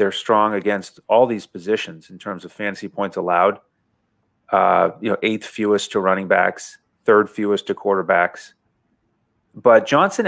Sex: male